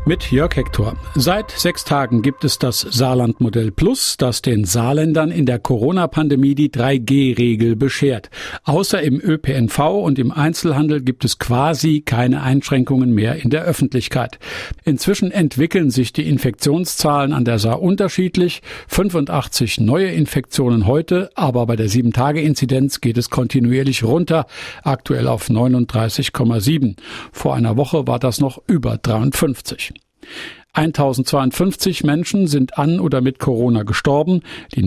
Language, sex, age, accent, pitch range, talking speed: German, male, 50-69, German, 125-150 Hz, 135 wpm